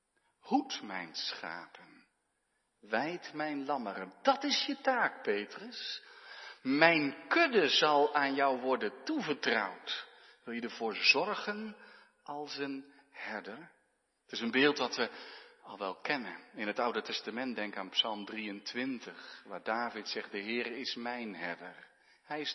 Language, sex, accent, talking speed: Dutch, male, Dutch, 140 wpm